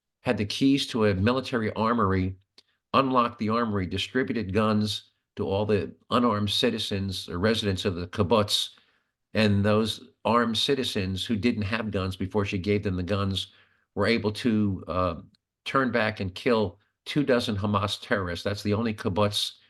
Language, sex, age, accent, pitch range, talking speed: English, male, 50-69, American, 100-115 Hz, 160 wpm